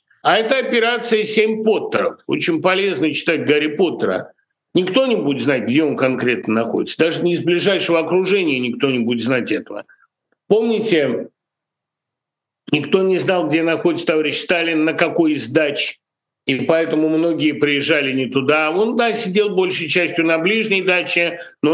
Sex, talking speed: male, 150 wpm